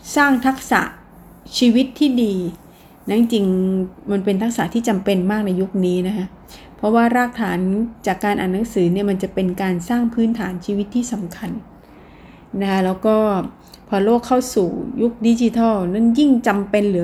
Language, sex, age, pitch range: Thai, female, 30-49, 190-235 Hz